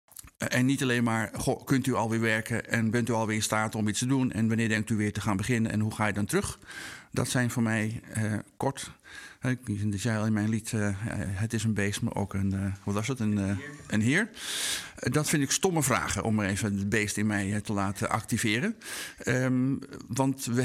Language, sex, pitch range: Dutch, male, 105-130 Hz